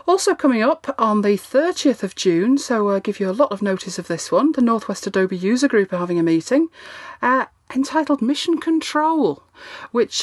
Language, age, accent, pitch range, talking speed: English, 40-59, British, 180-255 Hz, 200 wpm